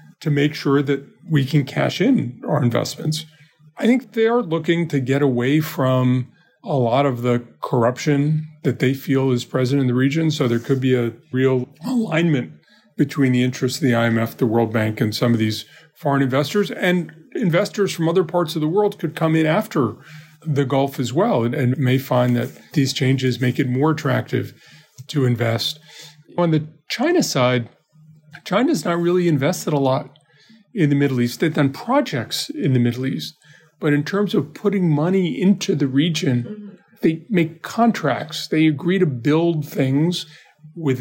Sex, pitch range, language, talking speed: male, 130-165 Hz, English, 180 wpm